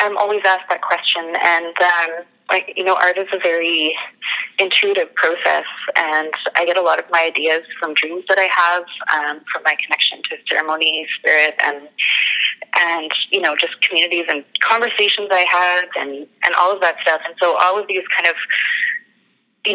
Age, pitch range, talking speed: 20-39, 165-195 Hz, 180 wpm